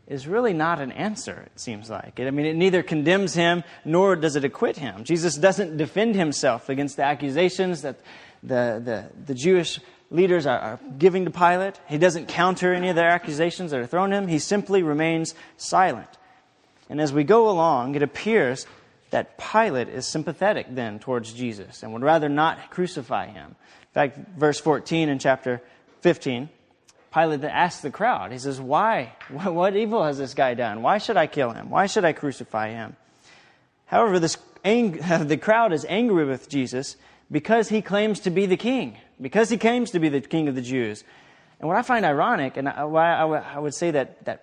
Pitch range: 140-185 Hz